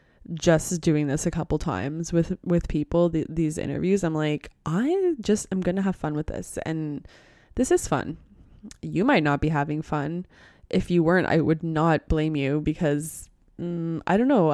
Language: English